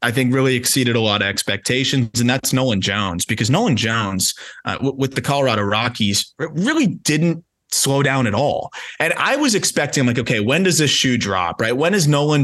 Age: 20-39